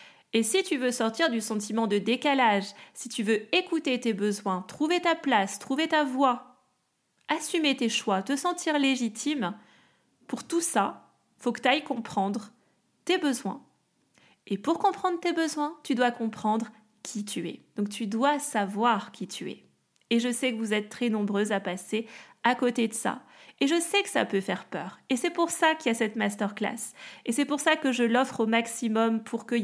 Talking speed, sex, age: 200 wpm, female, 30-49